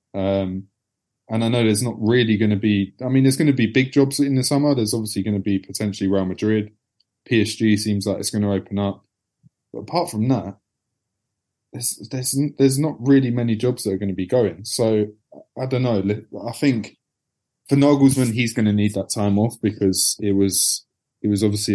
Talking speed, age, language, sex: 205 wpm, 20-39, English, male